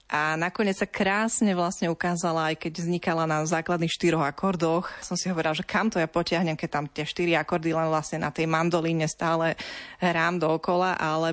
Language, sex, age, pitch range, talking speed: Slovak, female, 20-39, 155-185 Hz, 190 wpm